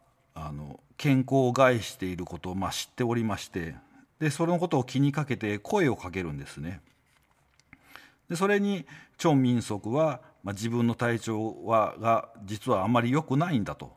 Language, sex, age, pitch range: Japanese, male, 50-69, 105-150 Hz